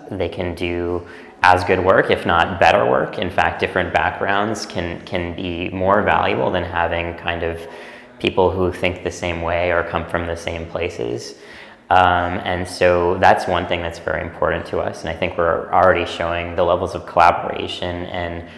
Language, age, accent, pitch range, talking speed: English, 20-39, American, 85-95 Hz, 185 wpm